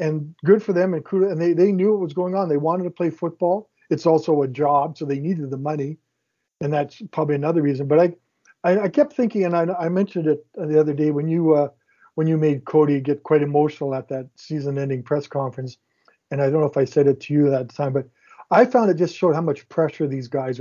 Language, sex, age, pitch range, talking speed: English, male, 50-69, 140-170 Hz, 250 wpm